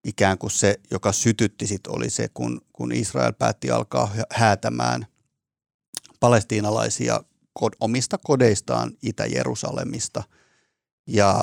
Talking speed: 90 wpm